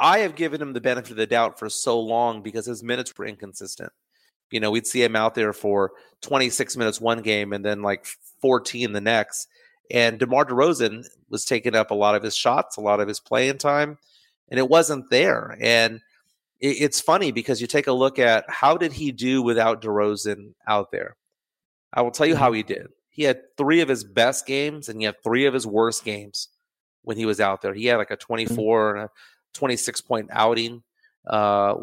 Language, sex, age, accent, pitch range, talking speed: English, male, 30-49, American, 105-135 Hz, 210 wpm